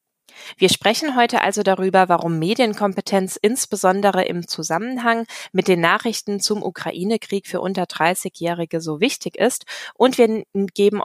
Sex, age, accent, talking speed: female, 20-39, German, 130 wpm